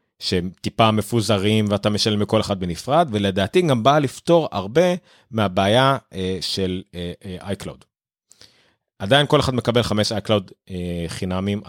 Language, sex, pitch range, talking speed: Hebrew, male, 100-140 Hz, 120 wpm